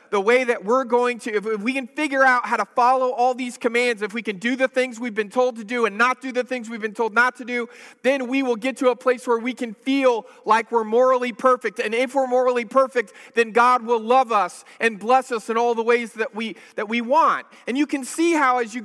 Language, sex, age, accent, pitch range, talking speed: English, male, 40-59, American, 230-275 Hz, 265 wpm